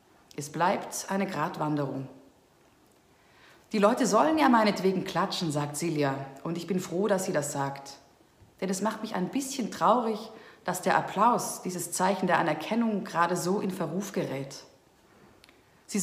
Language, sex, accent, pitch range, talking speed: German, female, German, 175-220 Hz, 150 wpm